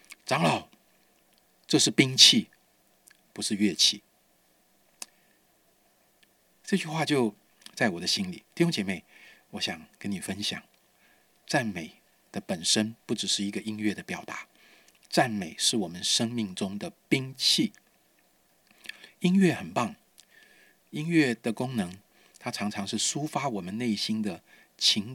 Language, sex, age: Chinese, male, 50-69